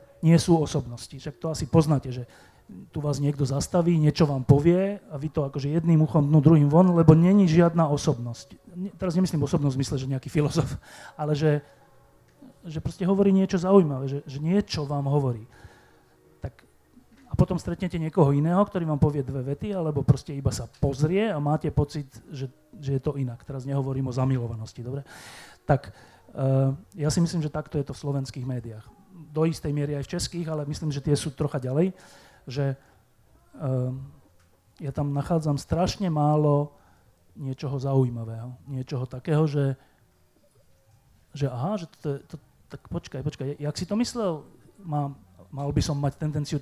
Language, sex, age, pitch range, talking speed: Slovak, male, 30-49, 135-160 Hz, 170 wpm